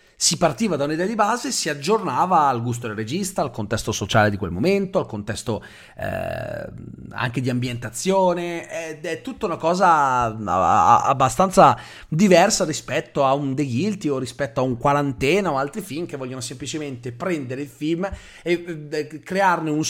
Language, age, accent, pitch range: Italian, 30-49, native, 115-165 Hz